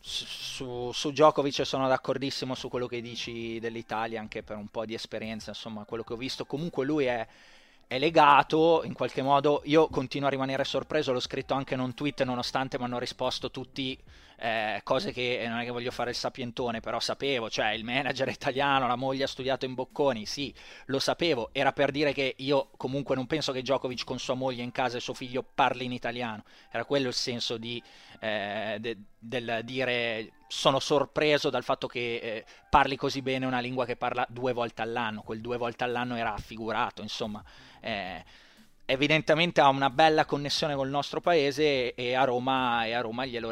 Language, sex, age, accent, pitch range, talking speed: Italian, male, 20-39, native, 120-140 Hz, 195 wpm